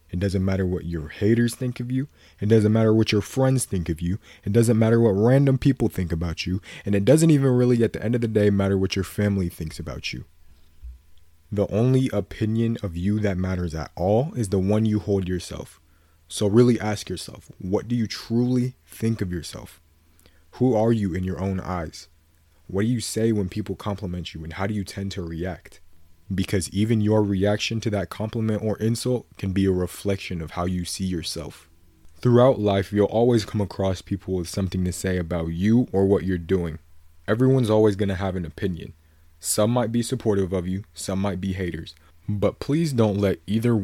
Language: English